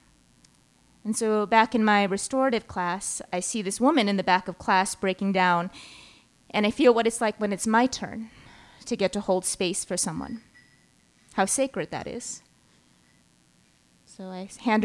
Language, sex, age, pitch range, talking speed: English, female, 20-39, 195-240 Hz, 170 wpm